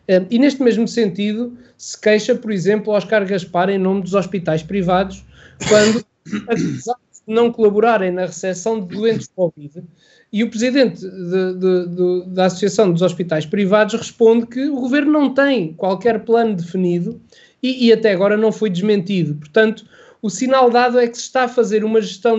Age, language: 20-39, Portuguese